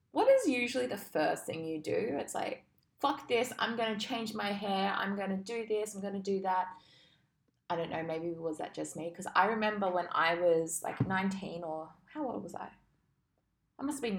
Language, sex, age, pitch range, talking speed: English, female, 20-39, 175-235 Hz, 225 wpm